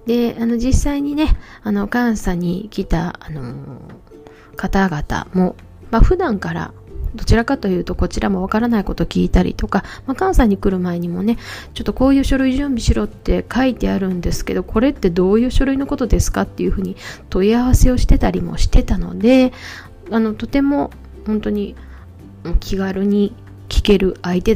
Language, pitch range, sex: Japanese, 150-225 Hz, female